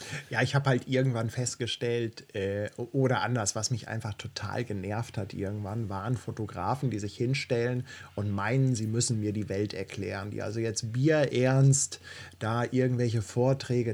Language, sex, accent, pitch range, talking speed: German, male, German, 110-135 Hz, 155 wpm